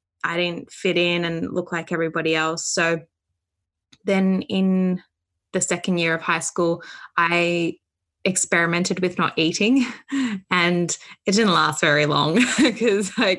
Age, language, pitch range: 20-39, English, 155-185 Hz